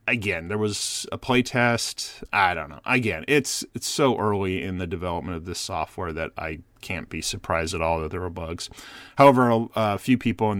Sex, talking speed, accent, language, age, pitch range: male, 200 wpm, American, English, 30-49, 90-115 Hz